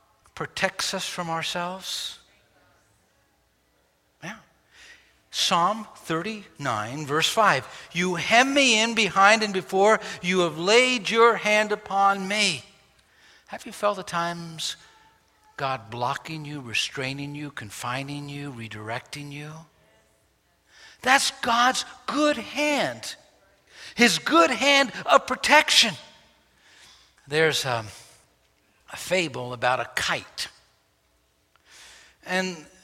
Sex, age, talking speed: male, 60-79, 100 wpm